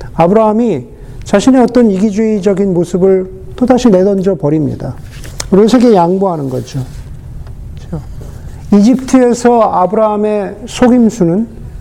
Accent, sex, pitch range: native, male, 145-210 Hz